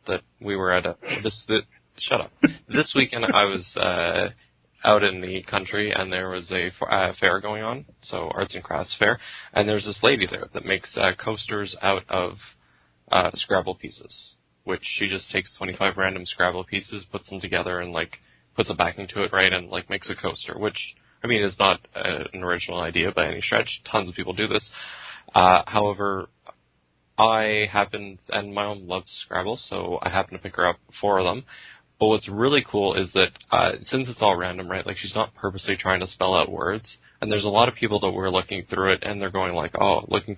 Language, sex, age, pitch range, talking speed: English, male, 20-39, 90-105 Hz, 210 wpm